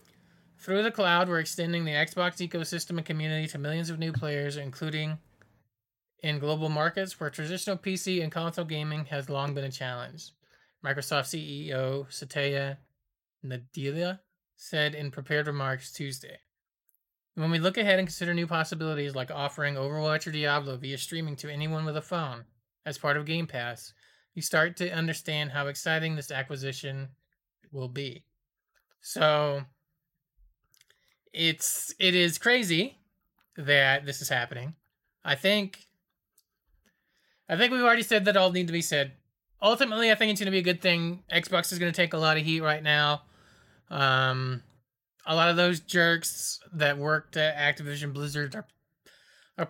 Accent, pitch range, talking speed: American, 140-170 Hz, 160 wpm